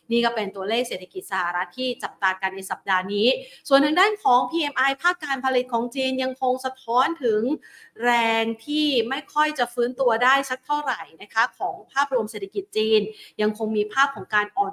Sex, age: female, 30-49